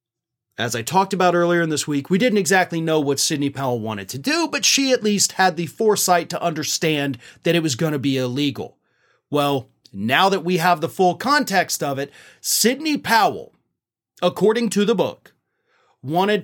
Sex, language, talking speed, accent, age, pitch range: male, English, 185 wpm, American, 30-49, 150-220 Hz